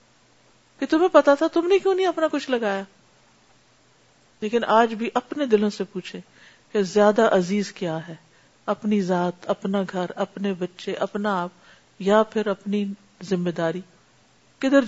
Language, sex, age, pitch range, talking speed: Urdu, female, 50-69, 190-280 Hz, 150 wpm